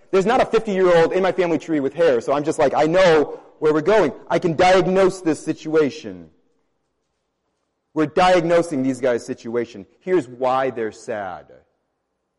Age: 30-49